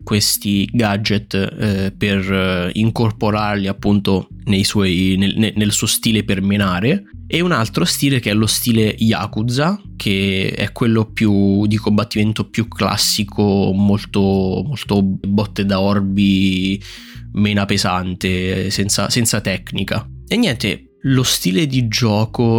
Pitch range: 95-110 Hz